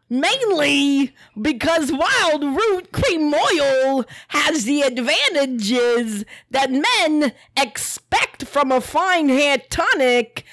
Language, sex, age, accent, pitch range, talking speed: English, female, 40-59, American, 250-310 Hz, 95 wpm